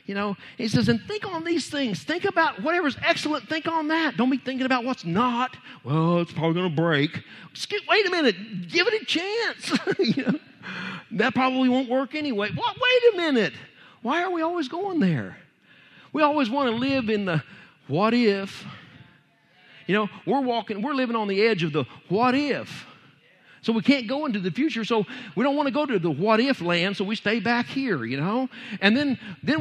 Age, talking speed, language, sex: 50-69, 205 wpm, English, male